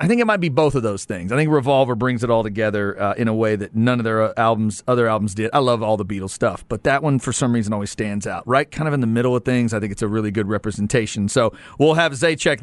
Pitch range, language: 120-175 Hz, English